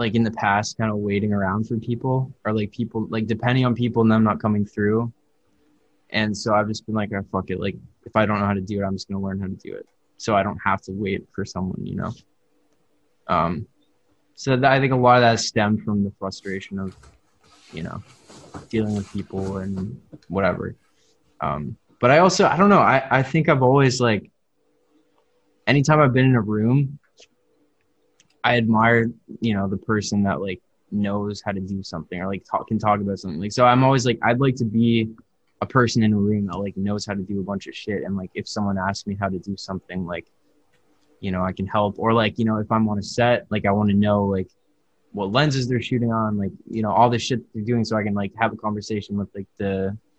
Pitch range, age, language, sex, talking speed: 100-120 Hz, 20-39, English, male, 235 wpm